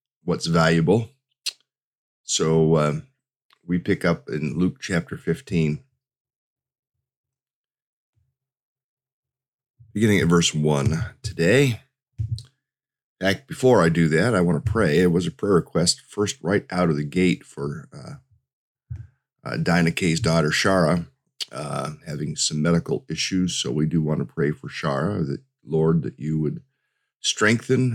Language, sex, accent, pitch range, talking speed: English, male, American, 80-130 Hz, 130 wpm